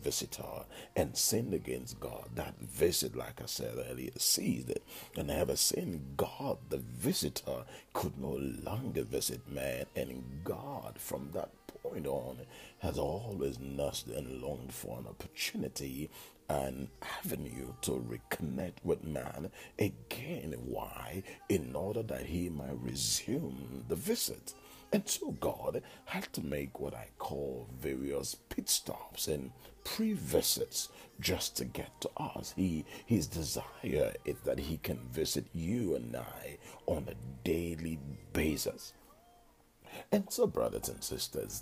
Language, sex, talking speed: English, male, 135 wpm